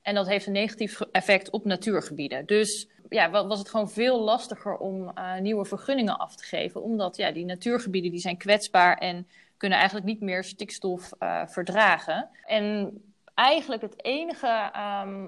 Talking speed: 165 wpm